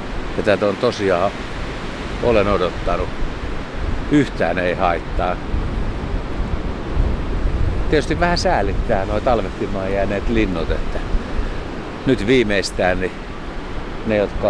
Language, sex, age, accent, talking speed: Finnish, male, 60-79, native, 95 wpm